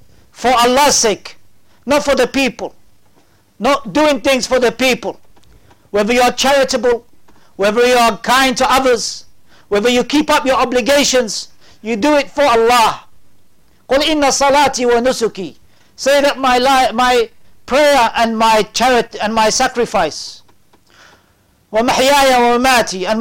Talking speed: 120 wpm